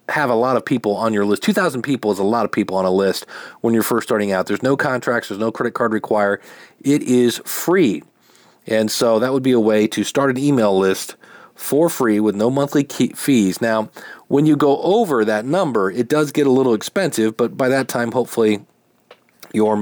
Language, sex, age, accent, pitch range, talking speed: English, male, 40-59, American, 110-140 Hz, 215 wpm